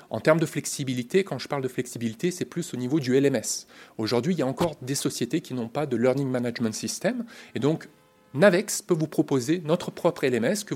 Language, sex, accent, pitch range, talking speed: French, male, French, 120-160 Hz, 215 wpm